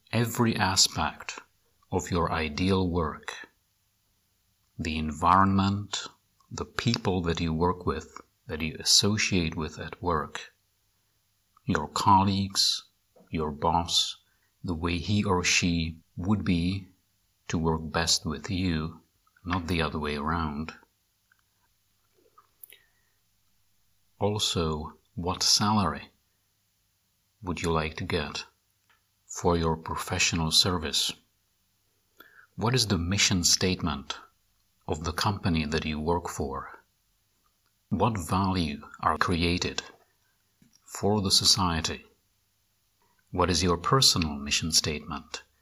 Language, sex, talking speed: English, male, 105 wpm